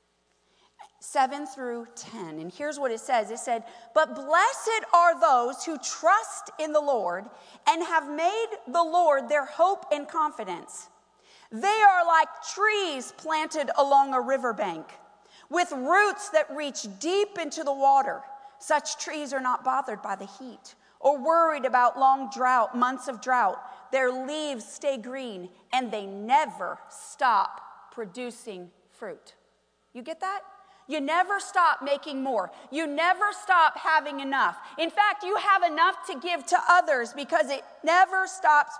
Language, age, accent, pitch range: English, 40-59, American, 250-345 Hz